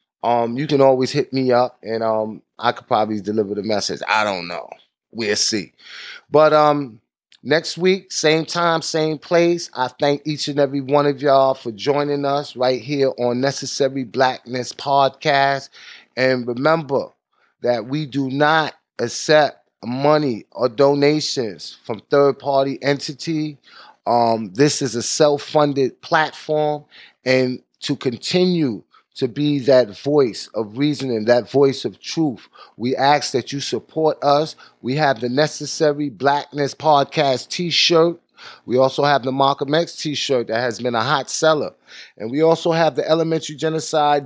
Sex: male